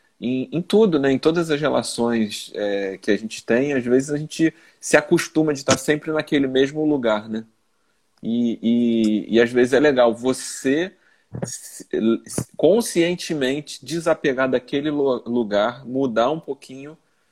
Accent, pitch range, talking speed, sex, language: Brazilian, 115-145 Hz, 140 wpm, male, Portuguese